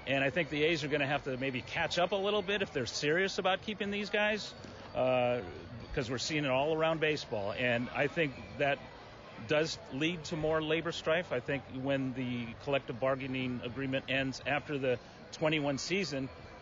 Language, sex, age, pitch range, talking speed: English, male, 40-59, 120-160 Hz, 190 wpm